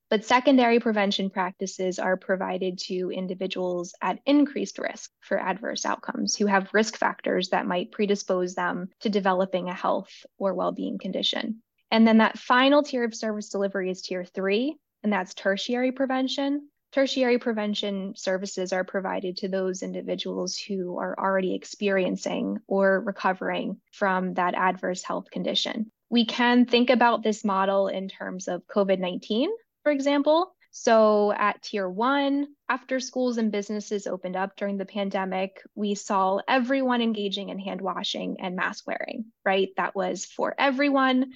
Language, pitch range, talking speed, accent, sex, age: English, 190-245 Hz, 150 wpm, American, female, 10-29